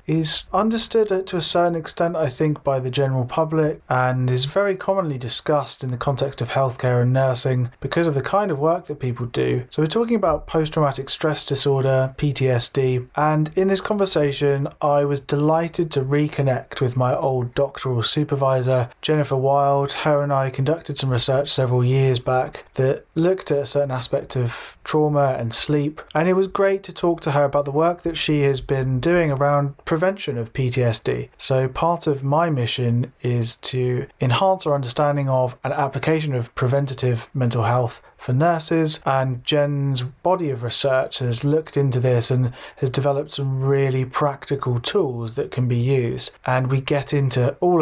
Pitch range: 130-155 Hz